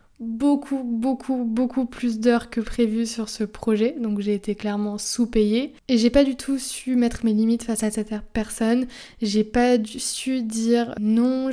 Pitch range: 215-250 Hz